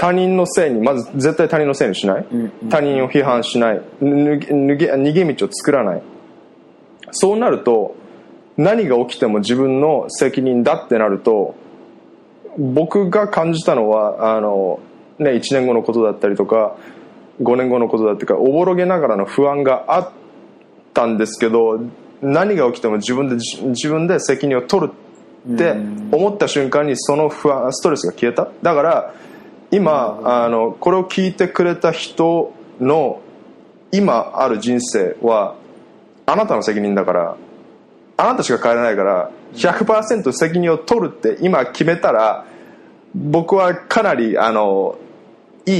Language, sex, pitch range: Japanese, male, 115-175 Hz